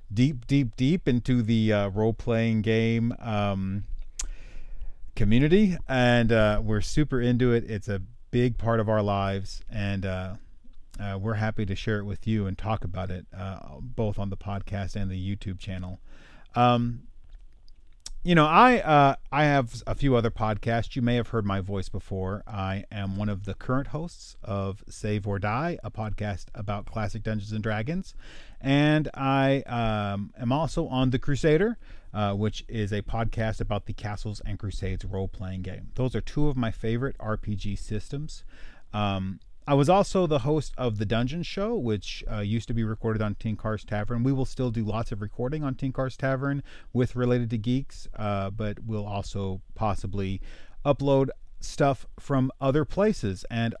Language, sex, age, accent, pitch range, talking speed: English, male, 40-59, American, 100-130 Hz, 175 wpm